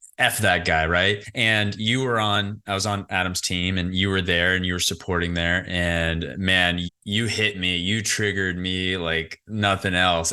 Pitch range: 85-115 Hz